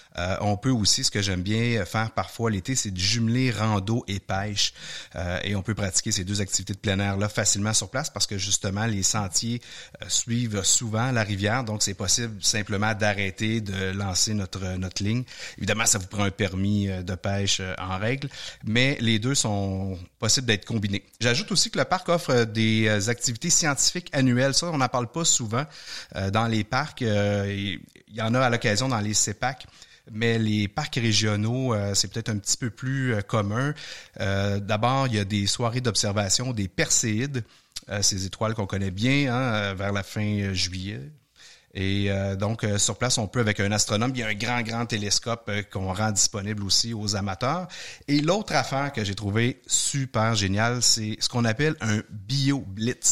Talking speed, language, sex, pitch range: 180 wpm, French, male, 100-120 Hz